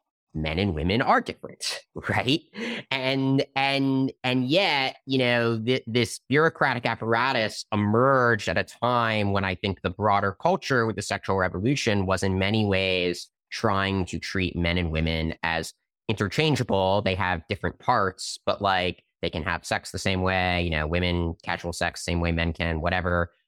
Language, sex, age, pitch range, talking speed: English, male, 30-49, 85-120 Hz, 165 wpm